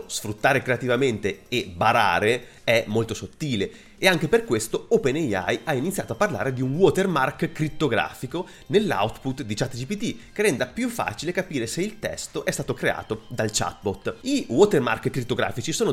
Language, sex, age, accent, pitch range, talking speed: Italian, male, 30-49, native, 110-180 Hz, 150 wpm